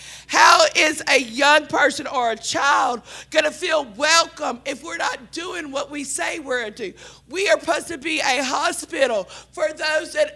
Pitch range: 250-315 Hz